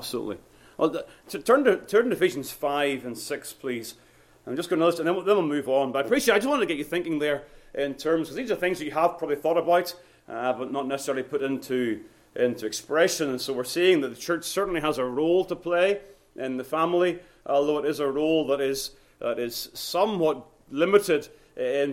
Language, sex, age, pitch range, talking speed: English, male, 30-49, 140-185 Hz, 225 wpm